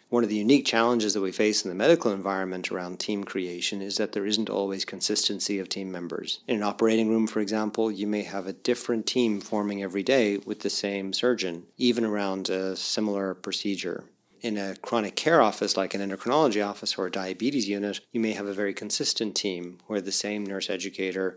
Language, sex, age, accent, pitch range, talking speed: English, male, 40-59, American, 95-110 Hz, 205 wpm